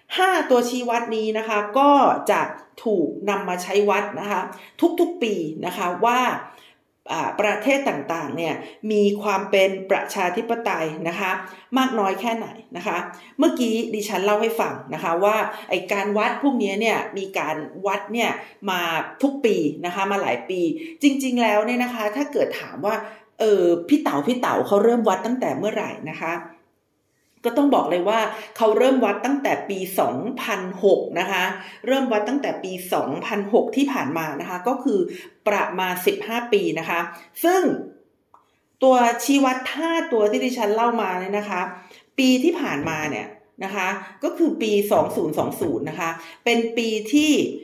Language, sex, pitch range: Thai, female, 185-245 Hz